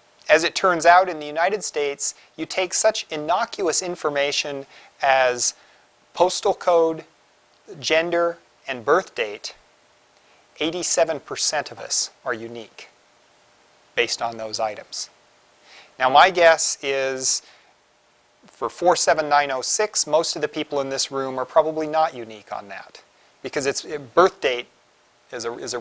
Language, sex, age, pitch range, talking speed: English, male, 40-59, 130-170 Hz, 130 wpm